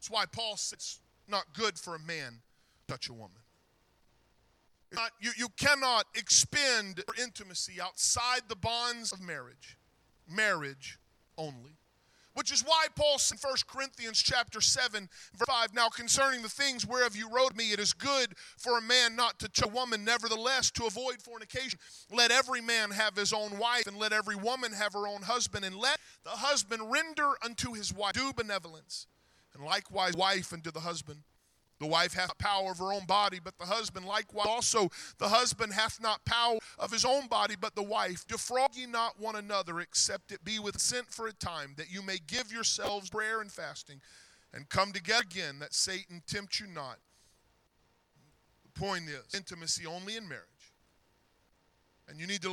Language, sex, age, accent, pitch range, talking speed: English, male, 40-59, American, 170-235 Hz, 185 wpm